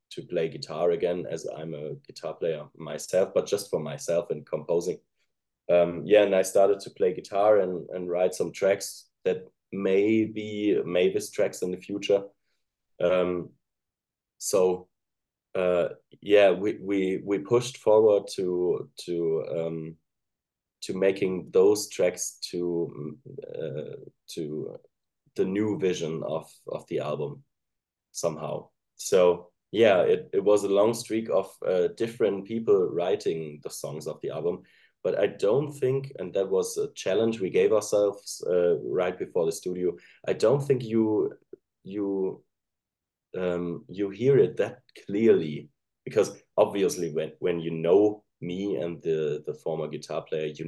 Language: English